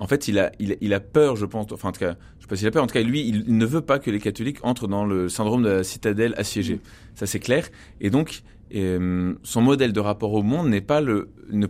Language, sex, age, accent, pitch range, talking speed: French, male, 30-49, French, 100-120 Hz, 280 wpm